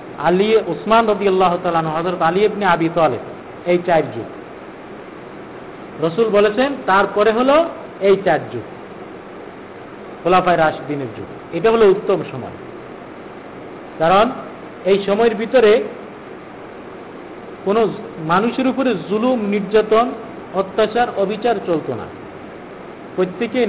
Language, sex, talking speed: Bengali, male, 100 wpm